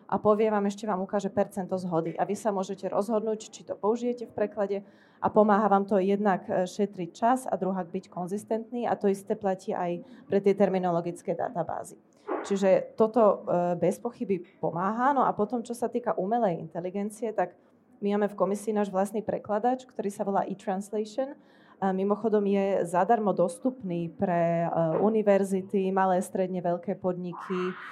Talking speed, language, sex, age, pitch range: 160 wpm, Slovak, female, 20-39, 185-215 Hz